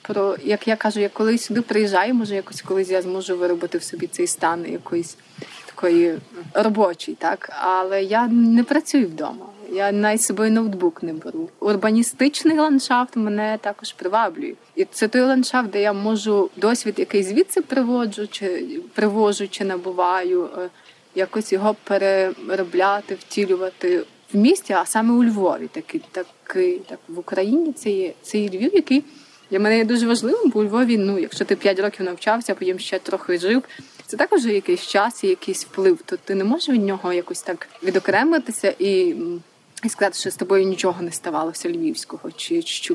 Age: 20-39